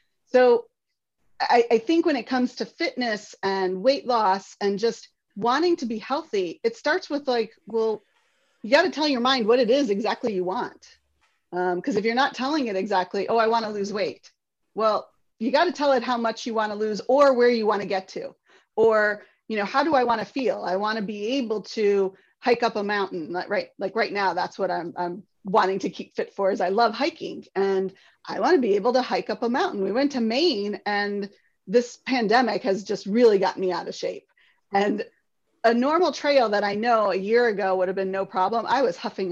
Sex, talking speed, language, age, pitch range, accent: female, 225 wpm, English, 30-49, 200-260 Hz, American